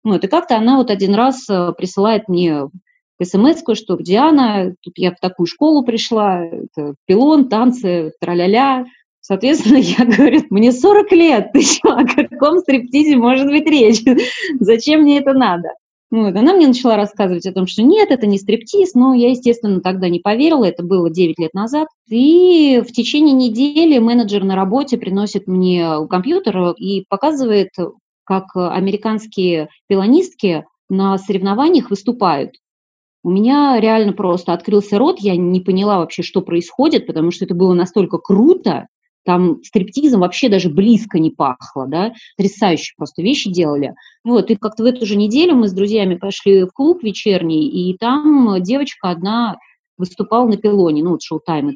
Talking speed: 160 wpm